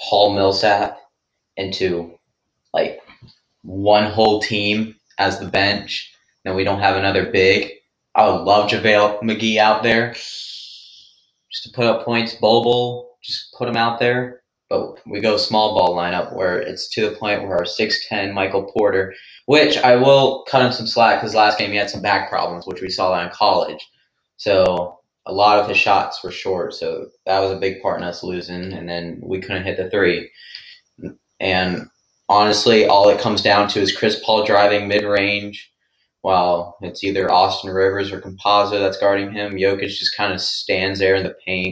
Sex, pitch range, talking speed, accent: male, 95-115 Hz, 180 wpm, American